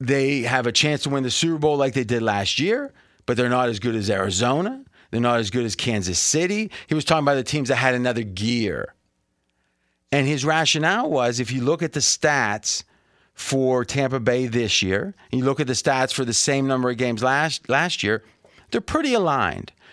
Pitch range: 120-160 Hz